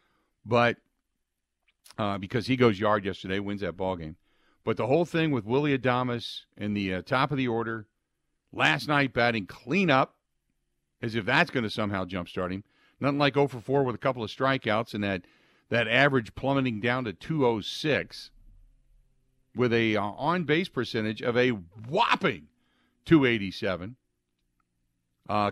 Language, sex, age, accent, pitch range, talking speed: English, male, 50-69, American, 95-130 Hz, 165 wpm